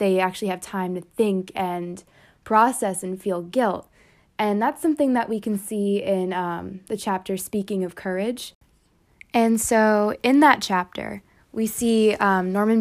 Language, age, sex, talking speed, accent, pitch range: English, 20-39, female, 160 wpm, American, 180-220 Hz